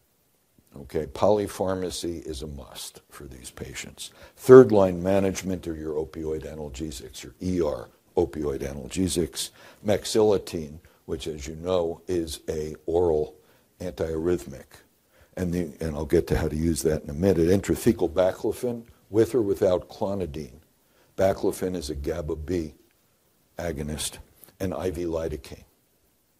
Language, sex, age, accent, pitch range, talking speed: English, male, 60-79, American, 75-90 Hz, 125 wpm